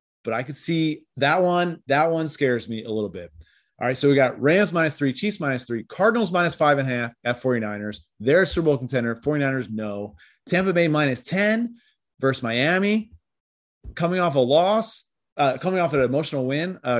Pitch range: 125-180 Hz